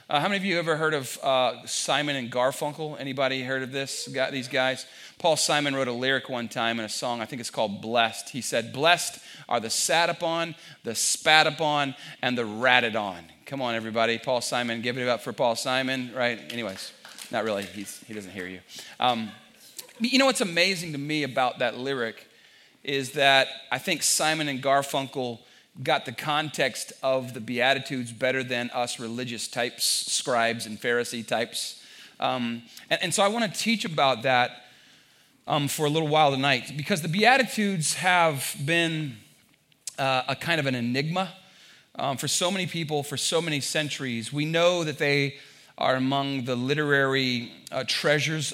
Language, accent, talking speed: English, American, 180 wpm